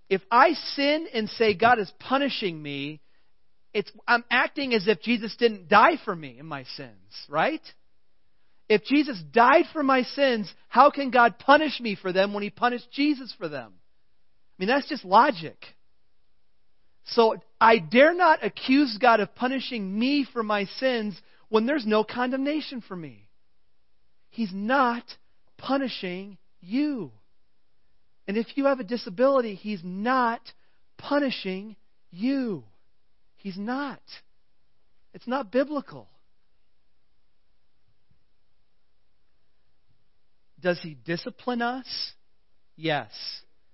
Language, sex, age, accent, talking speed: English, male, 40-59, American, 120 wpm